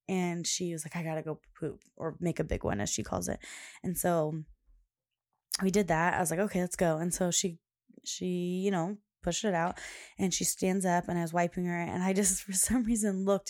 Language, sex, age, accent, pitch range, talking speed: English, female, 20-39, American, 170-205 Hz, 240 wpm